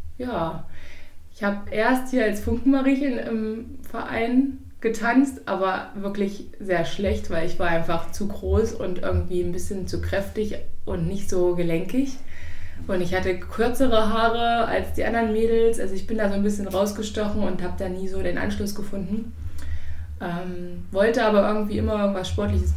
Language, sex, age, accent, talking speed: German, female, 20-39, German, 165 wpm